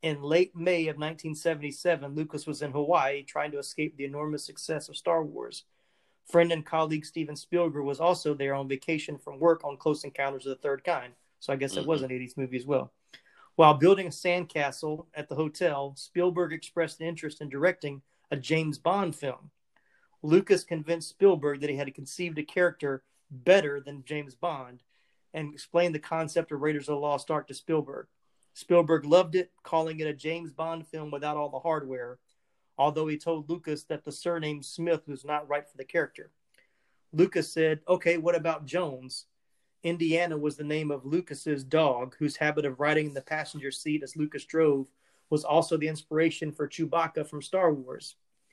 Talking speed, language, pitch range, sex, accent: 185 wpm, English, 145-165 Hz, male, American